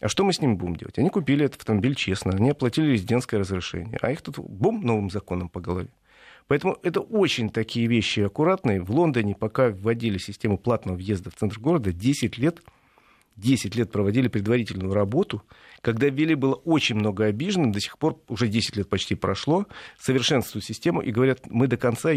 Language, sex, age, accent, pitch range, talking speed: Russian, male, 40-59, native, 105-140 Hz, 185 wpm